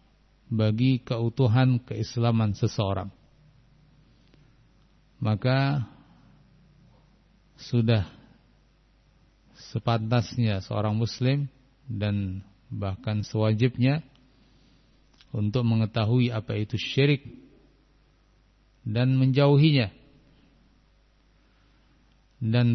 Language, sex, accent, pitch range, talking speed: Indonesian, male, native, 110-130 Hz, 55 wpm